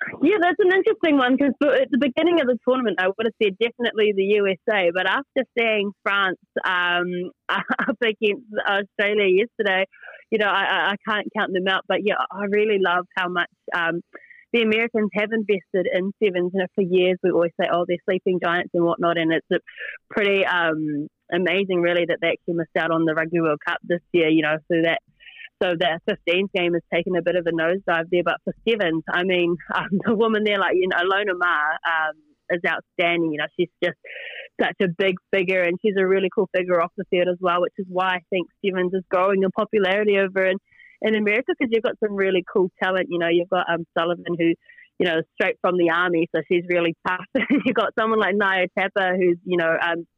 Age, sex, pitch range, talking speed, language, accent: 20-39, female, 175-210 Hz, 215 wpm, English, Australian